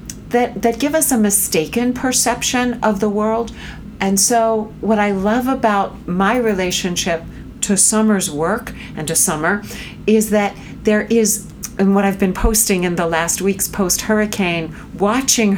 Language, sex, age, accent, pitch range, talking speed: English, female, 50-69, American, 175-220 Hz, 150 wpm